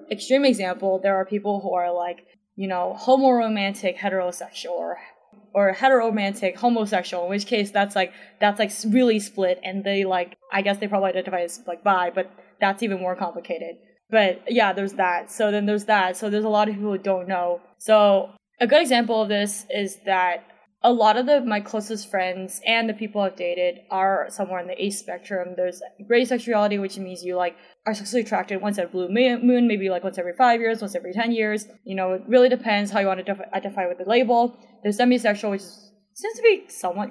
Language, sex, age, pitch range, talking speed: English, female, 10-29, 185-225 Hz, 210 wpm